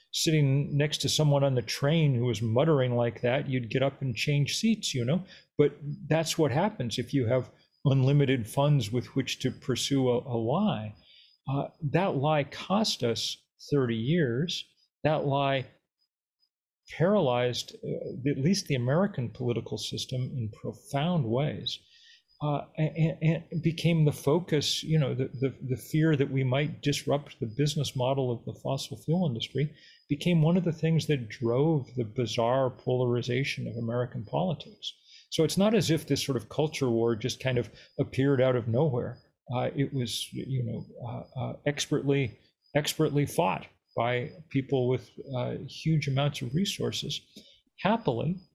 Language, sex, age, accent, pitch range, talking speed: English, male, 40-59, American, 125-155 Hz, 160 wpm